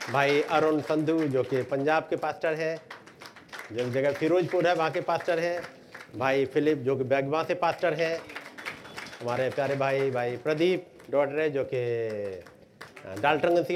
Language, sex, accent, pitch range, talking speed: Hindi, male, native, 125-170 Hz, 150 wpm